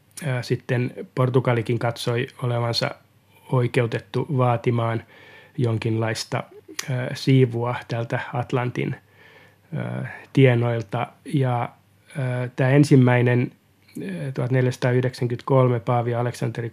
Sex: male